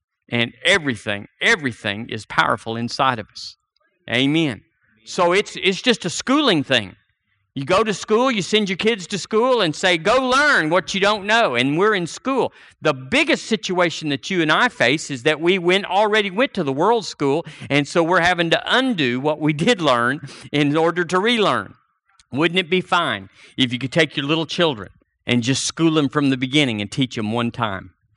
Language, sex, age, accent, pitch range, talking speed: English, male, 50-69, American, 120-180 Hz, 200 wpm